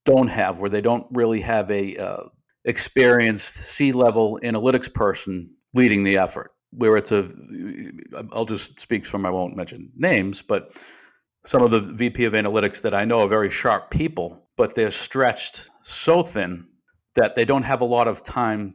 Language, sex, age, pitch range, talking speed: English, male, 50-69, 95-115 Hz, 175 wpm